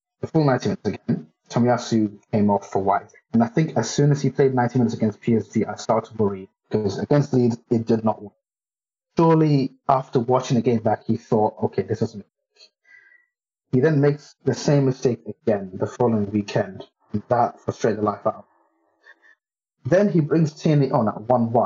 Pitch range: 110-145 Hz